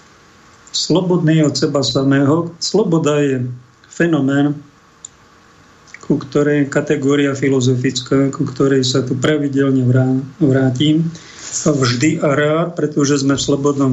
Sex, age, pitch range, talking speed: male, 50-69, 130-155 Hz, 105 wpm